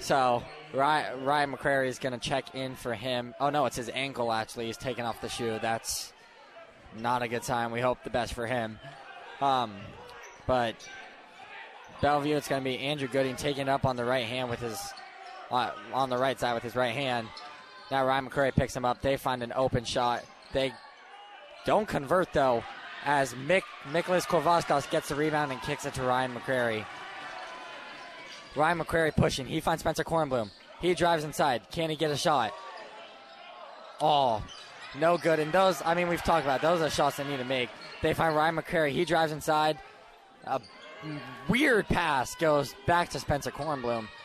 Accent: American